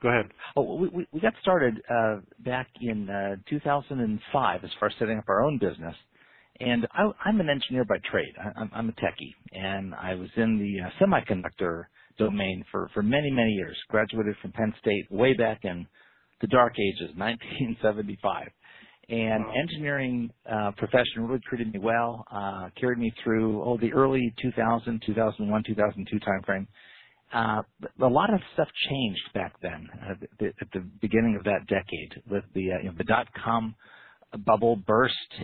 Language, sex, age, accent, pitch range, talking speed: English, male, 50-69, American, 100-120 Hz, 170 wpm